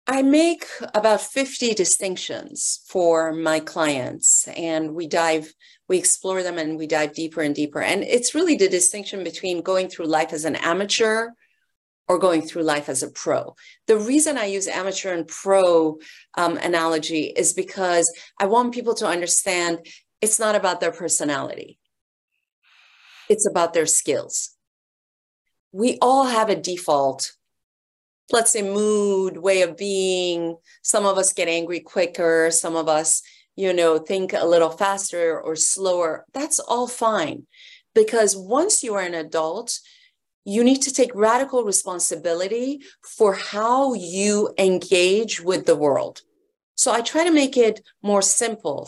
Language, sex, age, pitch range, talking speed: English, female, 40-59, 165-230 Hz, 150 wpm